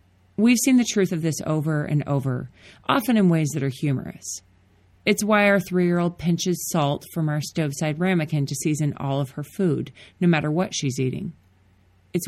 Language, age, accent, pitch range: English, 30-49, American, 135-175 Hz